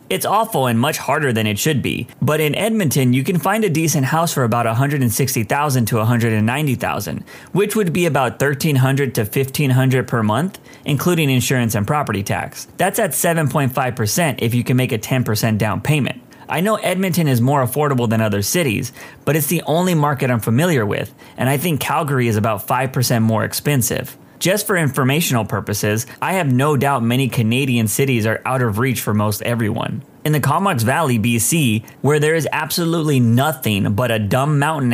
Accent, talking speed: American, 180 wpm